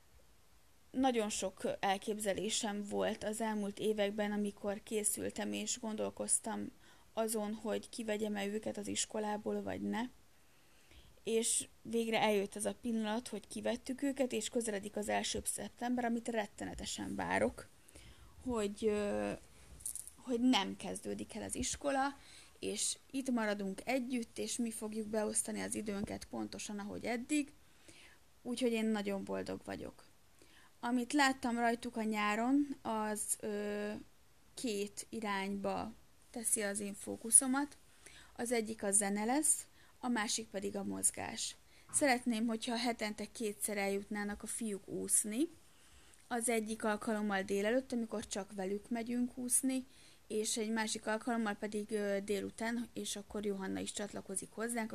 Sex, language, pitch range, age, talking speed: female, Hungarian, 200-235 Hz, 30-49, 125 wpm